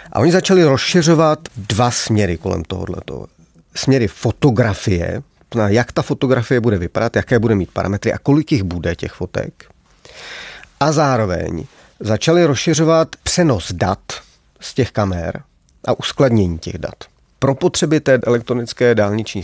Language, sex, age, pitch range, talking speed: Czech, male, 40-59, 95-120 Hz, 135 wpm